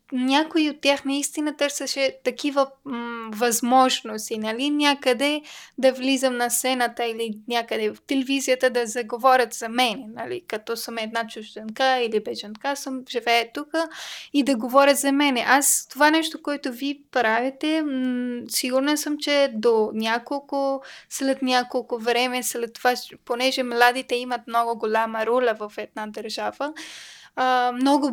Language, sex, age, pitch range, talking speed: Bulgarian, female, 10-29, 240-280 Hz, 140 wpm